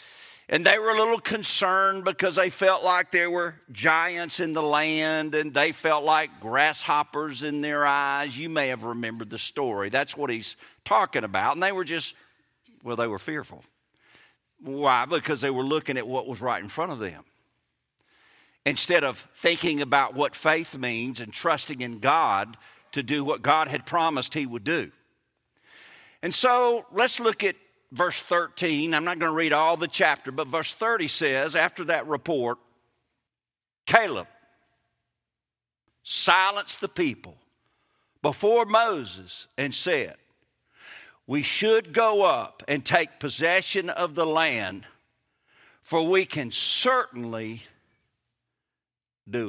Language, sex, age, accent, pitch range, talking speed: English, male, 50-69, American, 135-190 Hz, 145 wpm